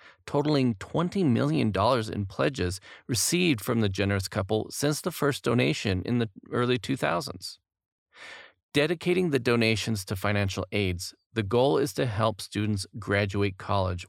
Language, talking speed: English, 135 wpm